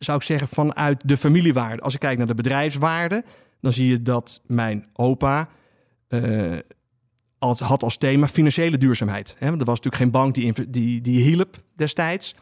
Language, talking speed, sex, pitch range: Dutch, 180 wpm, male, 120-145 Hz